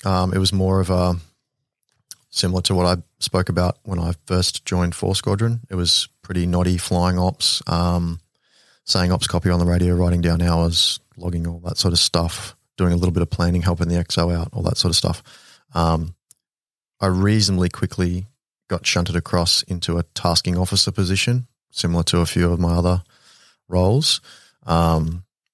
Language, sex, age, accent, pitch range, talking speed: English, male, 20-39, Australian, 85-95 Hz, 180 wpm